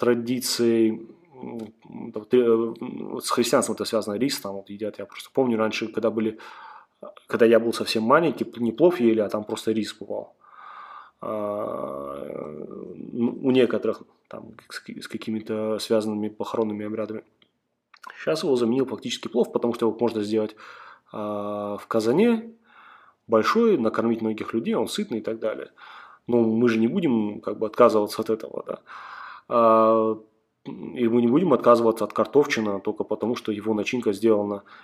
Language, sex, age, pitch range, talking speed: Russian, male, 20-39, 110-120 Hz, 140 wpm